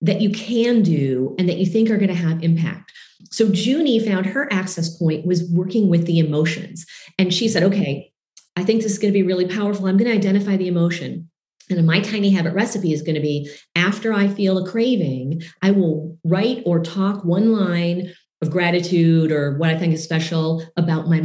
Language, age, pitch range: English, 40-59, 160-200 Hz